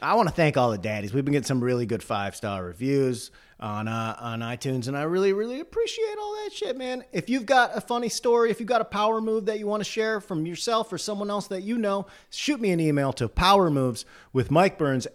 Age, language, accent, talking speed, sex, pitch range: 30-49, English, American, 250 wpm, male, 120-165 Hz